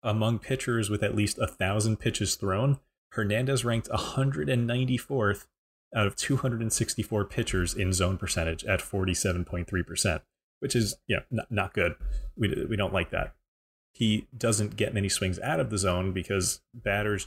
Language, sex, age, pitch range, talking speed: English, male, 30-49, 90-110 Hz, 145 wpm